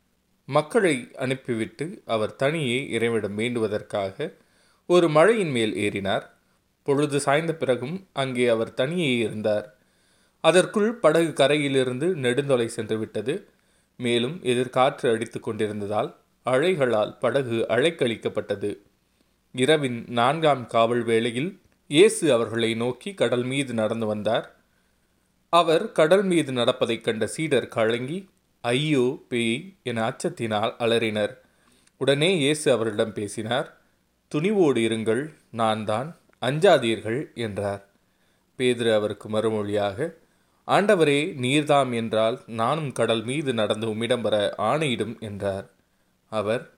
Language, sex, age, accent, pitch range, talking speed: Tamil, male, 30-49, native, 110-145 Hz, 95 wpm